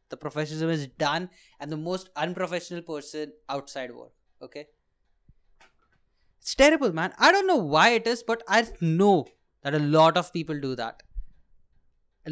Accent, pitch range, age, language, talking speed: Indian, 145-225 Hz, 20-39, English, 160 wpm